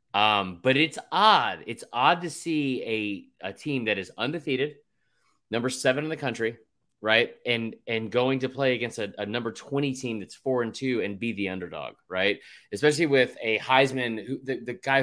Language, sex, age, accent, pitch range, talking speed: English, male, 30-49, American, 110-145 Hz, 190 wpm